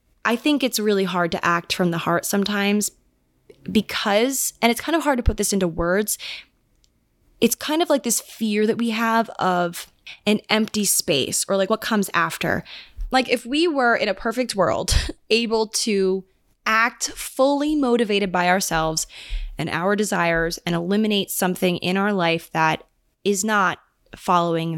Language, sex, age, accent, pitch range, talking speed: English, female, 20-39, American, 175-225 Hz, 165 wpm